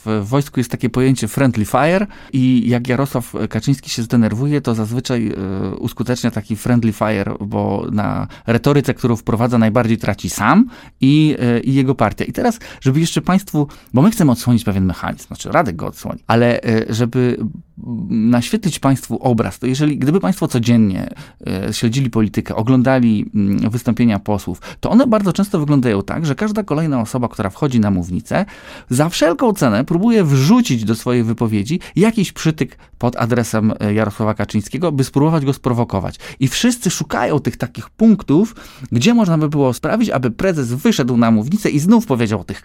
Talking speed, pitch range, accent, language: 160 wpm, 110-150 Hz, native, Polish